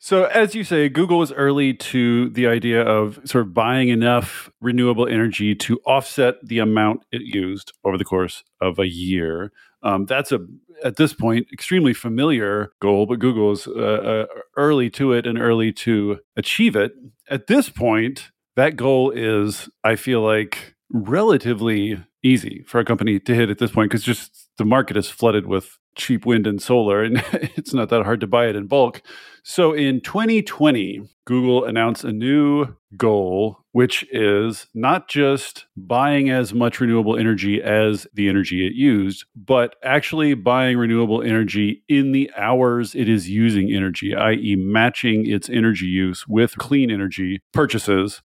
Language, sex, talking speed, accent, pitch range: English, male, 165 wpm, American, 105-130 Hz